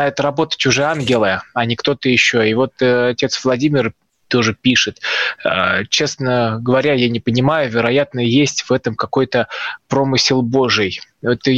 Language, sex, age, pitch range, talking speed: Russian, male, 20-39, 115-135 Hz, 140 wpm